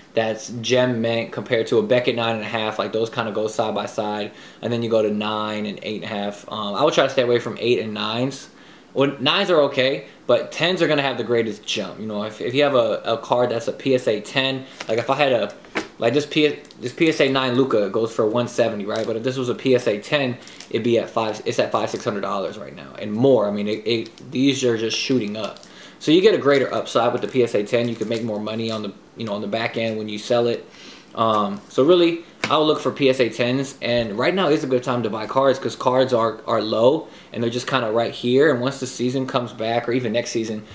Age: 20-39